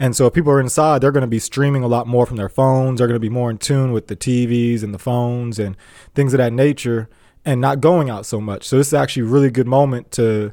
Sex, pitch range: male, 115-140 Hz